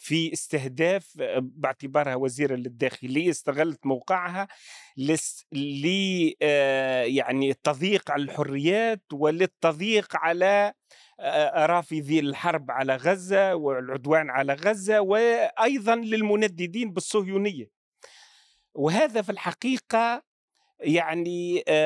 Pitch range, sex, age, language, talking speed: 145-195 Hz, male, 40-59, Arabic, 75 wpm